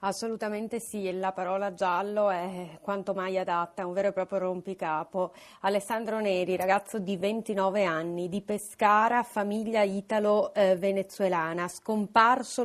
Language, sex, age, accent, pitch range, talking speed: Italian, female, 30-49, native, 190-220 Hz, 125 wpm